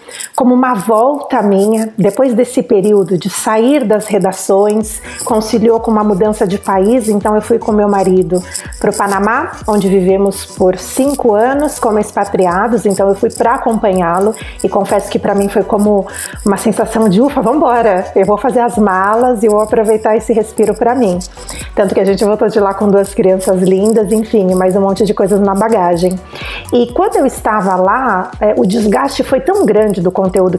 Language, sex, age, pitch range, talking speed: Portuguese, female, 40-59, 200-255 Hz, 185 wpm